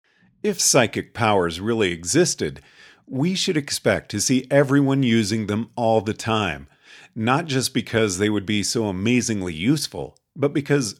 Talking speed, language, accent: 145 wpm, English, American